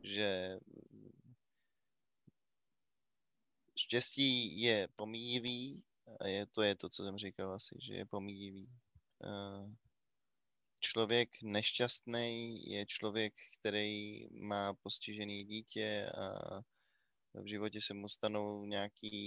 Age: 20-39